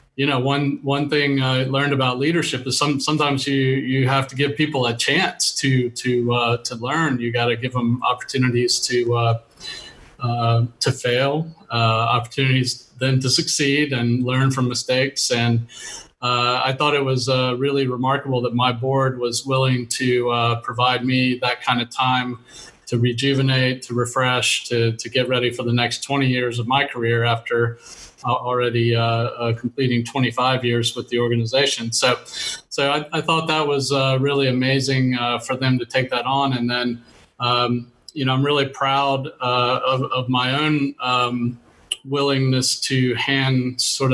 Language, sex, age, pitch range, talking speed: English, male, 30-49, 120-135 Hz, 175 wpm